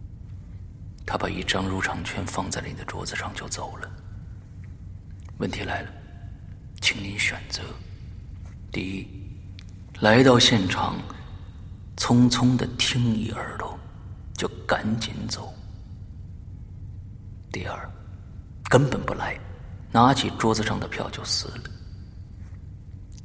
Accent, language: native, Chinese